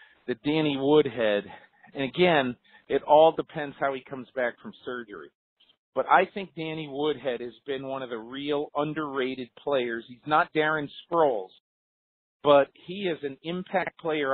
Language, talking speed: English, 155 wpm